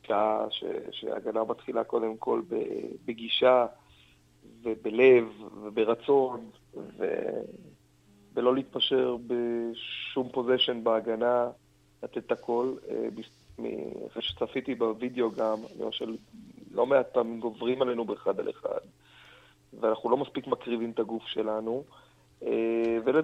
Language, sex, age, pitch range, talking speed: Hebrew, male, 40-59, 110-130 Hz, 95 wpm